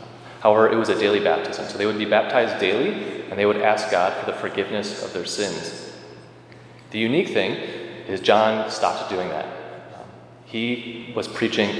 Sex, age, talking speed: male, 30-49, 175 wpm